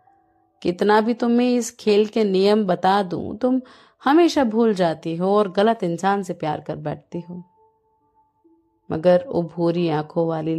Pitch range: 175-235 Hz